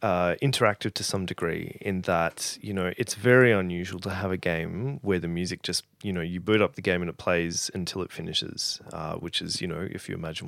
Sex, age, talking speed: male, 30-49, 235 wpm